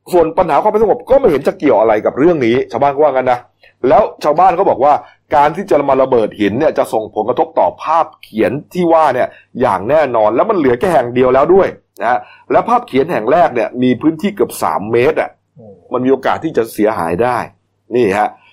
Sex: male